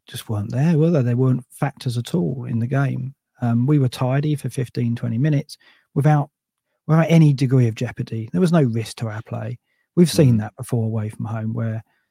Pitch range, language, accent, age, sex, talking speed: 115-145 Hz, English, British, 40-59, male, 210 wpm